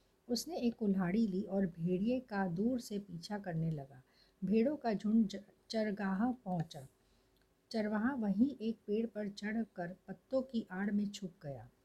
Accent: native